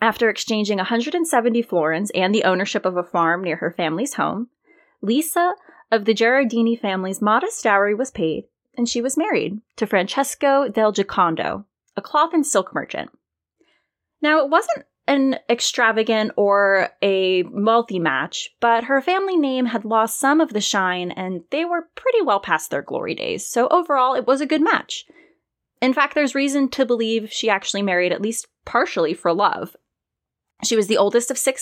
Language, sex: English, female